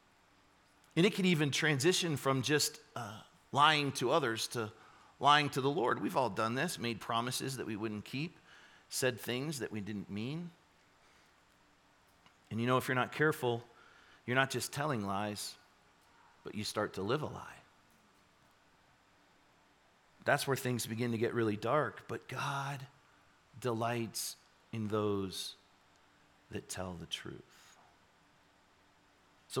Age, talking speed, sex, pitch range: 40-59, 140 wpm, male, 100-135 Hz